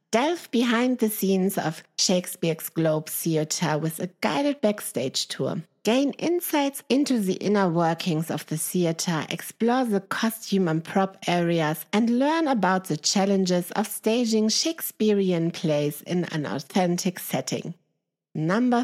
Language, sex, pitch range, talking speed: English, female, 160-220 Hz, 135 wpm